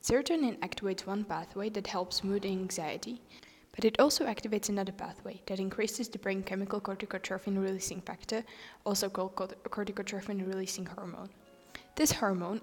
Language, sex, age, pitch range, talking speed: Slovak, female, 10-29, 190-230 Hz, 145 wpm